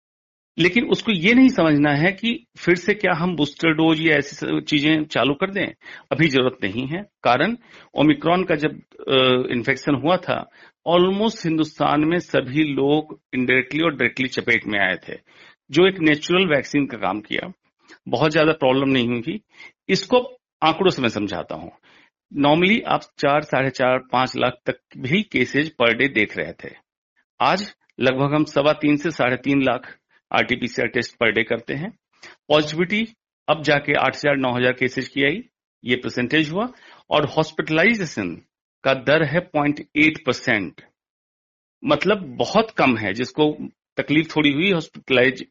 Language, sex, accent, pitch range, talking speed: Hindi, male, native, 130-170 Hz, 155 wpm